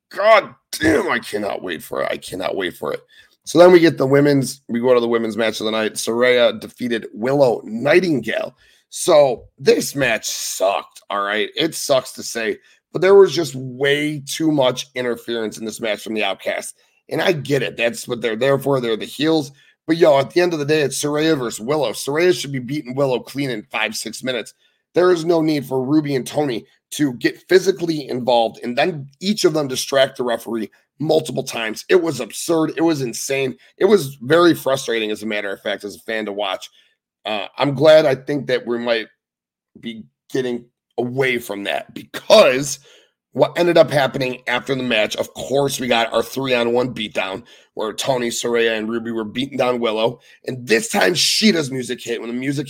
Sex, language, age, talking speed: male, English, 30-49, 205 wpm